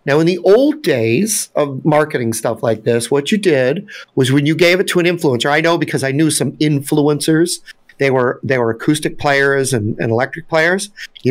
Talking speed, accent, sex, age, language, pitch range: 205 wpm, American, male, 50-69, English, 130-175 Hz